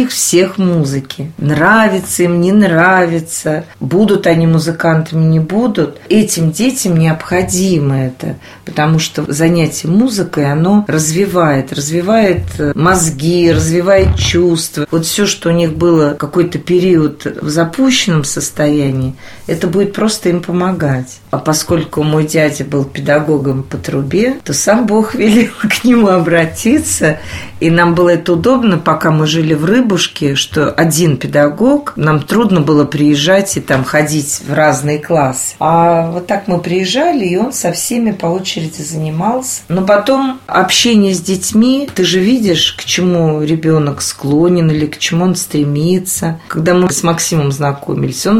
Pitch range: 150-185 Hz